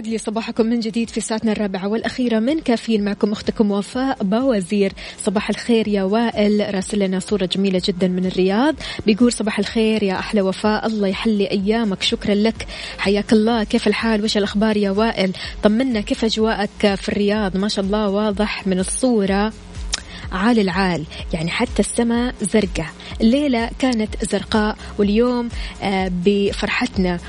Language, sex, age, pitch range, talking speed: Arabic, female, 20-39, 195-230 Hz, 145 wpm